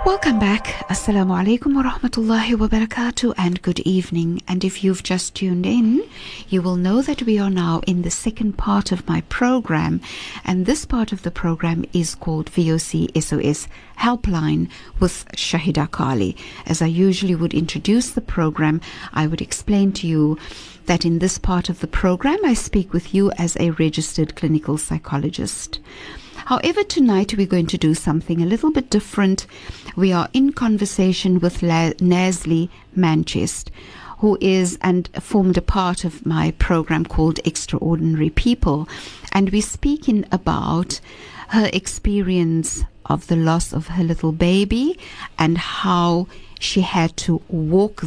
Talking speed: 150 wpm